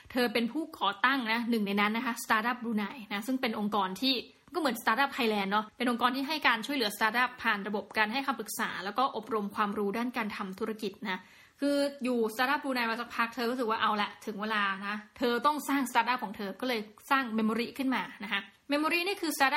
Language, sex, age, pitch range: Thai, female, 20-39, 210-260 Hz